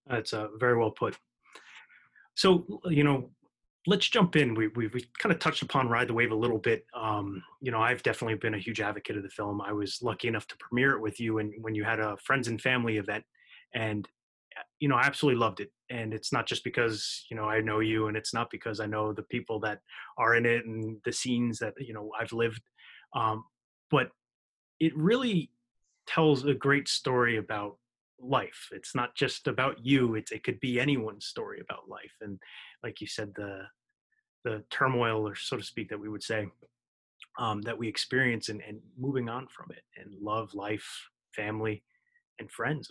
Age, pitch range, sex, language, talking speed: 30-49, 110-135 Hz, male, English, 205 wpm